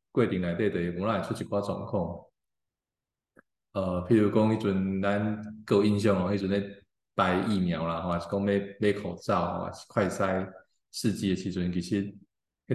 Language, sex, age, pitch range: Chinese, male, 20-39, 90-105 Hz